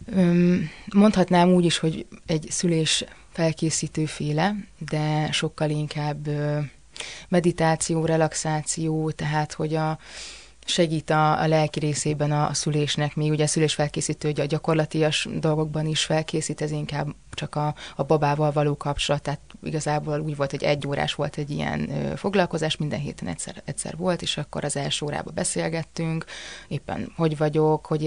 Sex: female